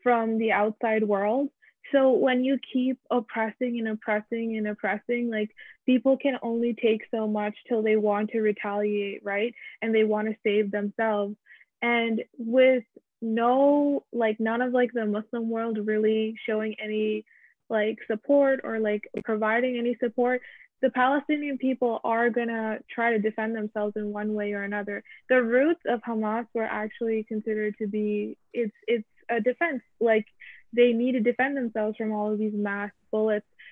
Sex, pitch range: female, 210-235 Hz